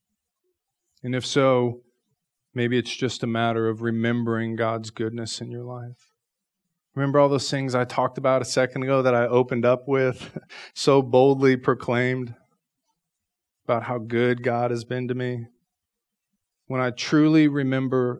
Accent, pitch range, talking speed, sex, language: American, 115-140 Hz, 150 wpm, male, English